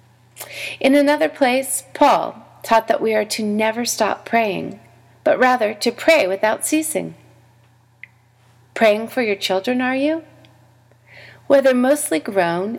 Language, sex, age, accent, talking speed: English, female, 40-59, American, 125 wpm